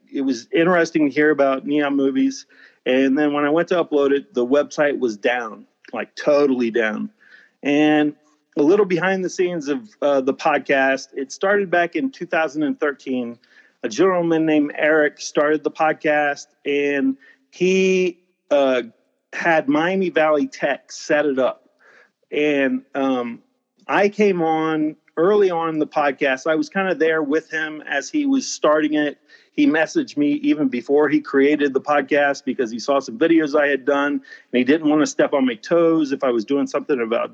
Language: English